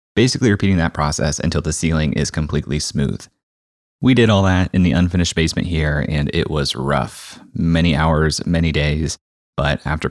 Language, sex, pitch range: English, male, 75-95 Hz